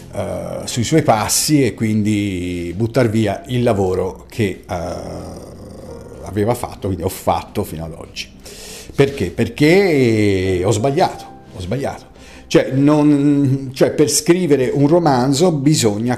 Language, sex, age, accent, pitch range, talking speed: Italian, male, 50-69, native, 95-140 Hz, 115 wpm